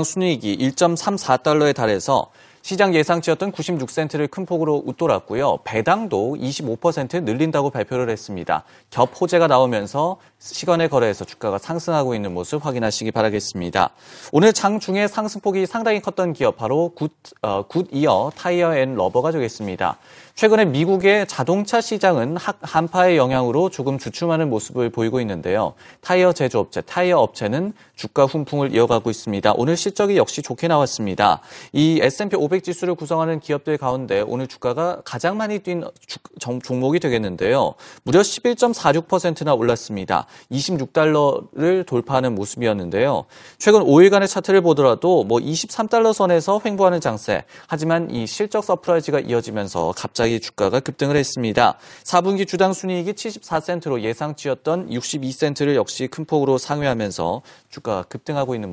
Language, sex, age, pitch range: Korean, male, 30-49, 125-180 Hz